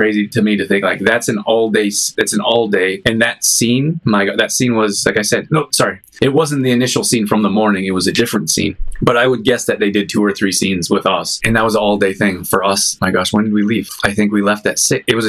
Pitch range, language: 105-125 Hz, English